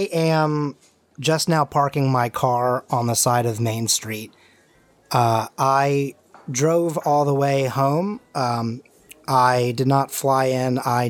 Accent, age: American, 30-49